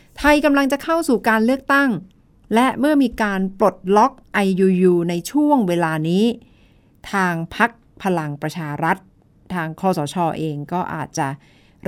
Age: 60-79